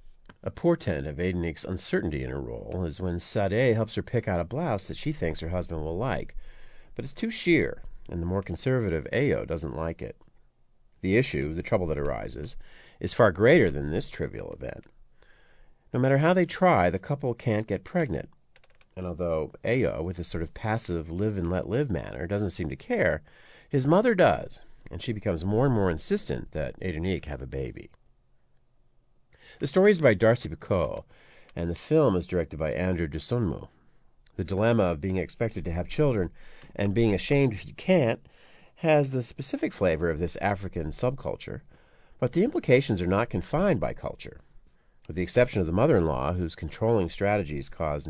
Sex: male